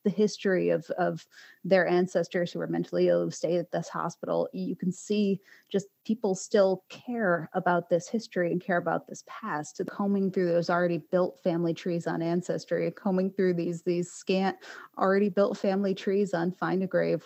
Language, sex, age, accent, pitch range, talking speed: English, female, 30-49, American, 165-190 Hz, 185 wpm